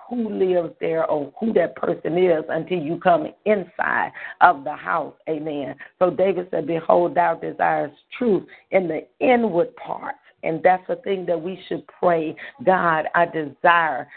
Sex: female